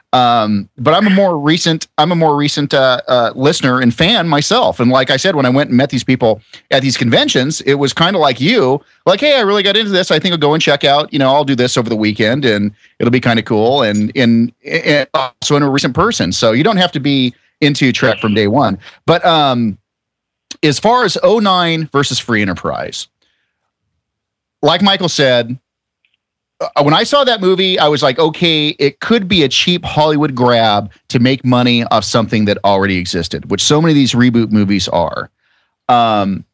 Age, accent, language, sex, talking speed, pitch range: 40-59, American, English, male, 210 wpm, 115-155 Hz